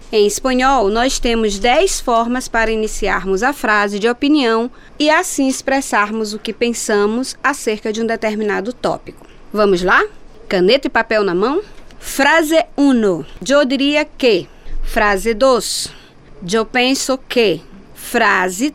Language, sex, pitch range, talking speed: Portuguese, female, 215-275 Hz, 130 wpm